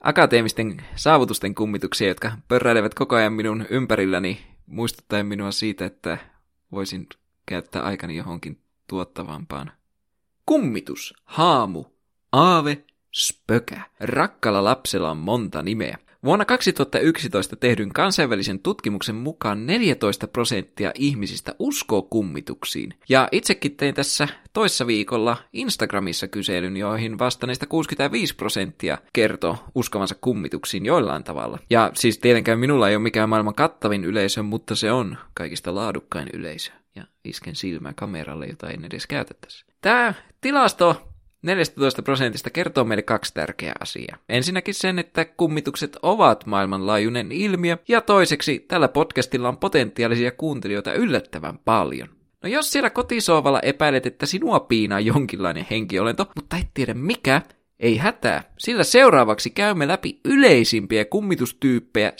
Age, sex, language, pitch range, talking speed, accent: 20-39, male, Finnish, 105-155 Hz, 125 wpm, native